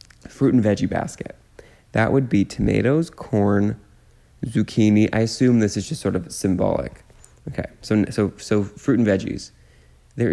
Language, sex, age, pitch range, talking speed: English, male, 20-39, 95-115 Hz, 150 wpm